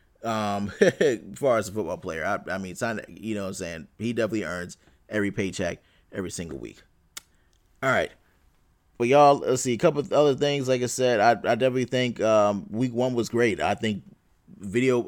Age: 20-39